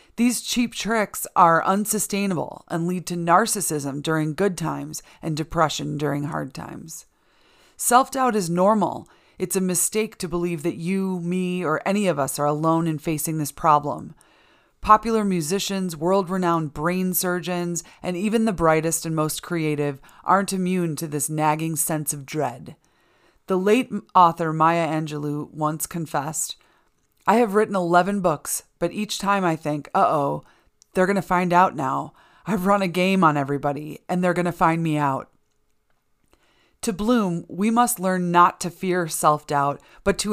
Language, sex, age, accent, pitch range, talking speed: English, female, 30-49, American, 155-190 Hz, 160 wpm